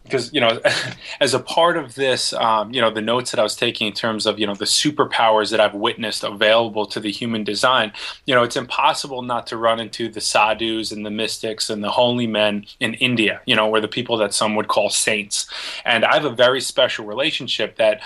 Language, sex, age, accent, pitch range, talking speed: English, male, 20-39, American, 105-125 Hz, 230 wpm